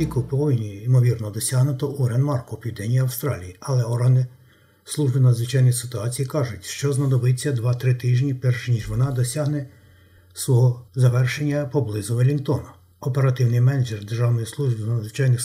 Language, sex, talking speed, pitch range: Ukrainian, male, 125 wpm, 120-135 Hz